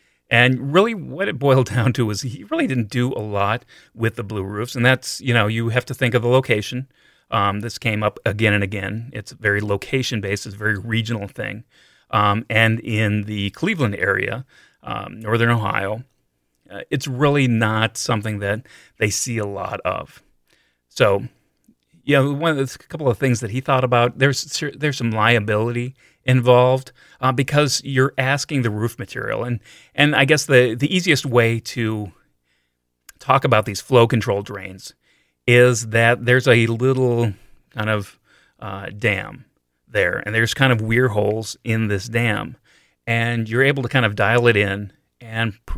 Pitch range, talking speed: 105-130 Hz, 175 wpm